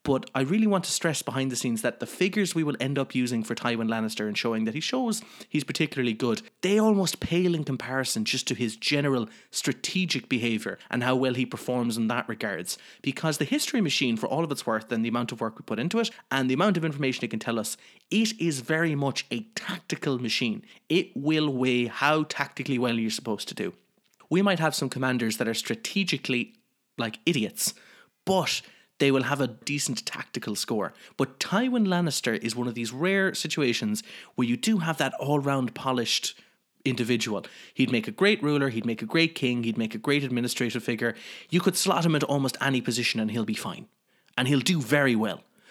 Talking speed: 210 wpm